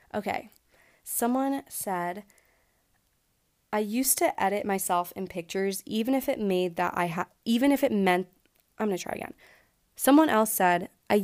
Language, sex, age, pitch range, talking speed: English, female, 20-39, 180-225 Hz, 160 wpm